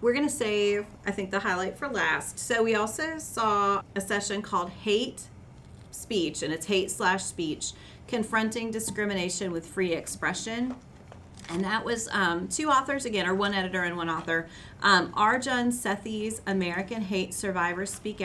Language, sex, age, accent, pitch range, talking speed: English, female, 30-49, American, 180-215 Hz, 160 wpm